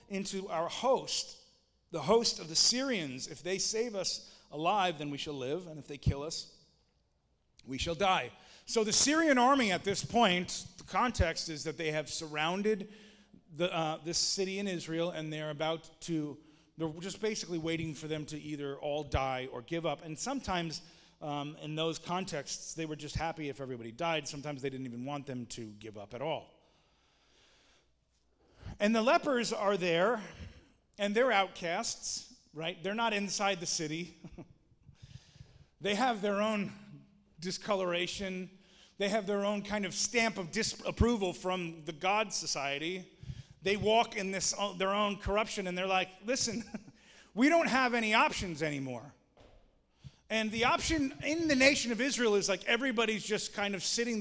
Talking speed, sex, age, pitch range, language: 165 wpm, male, 30-49, 155-210 Hz, English